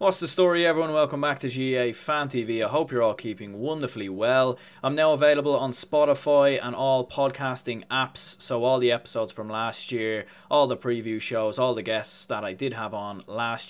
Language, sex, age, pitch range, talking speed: English, male, 20-39, 110-130 Hz, 200 wpm